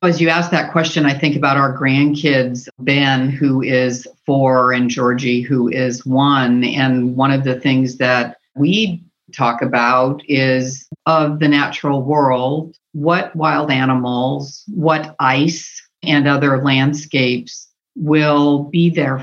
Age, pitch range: 50-69, 125-150 Hz